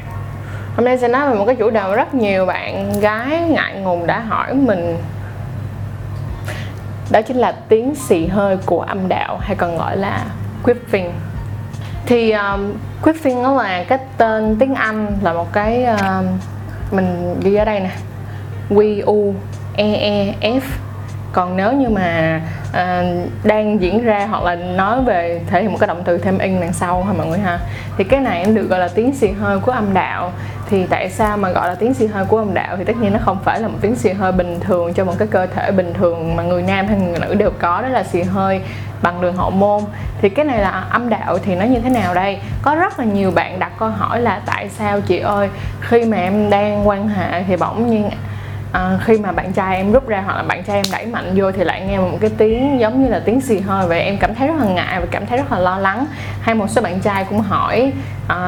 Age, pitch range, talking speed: 20-39, 165-225 Hz, 230 wpm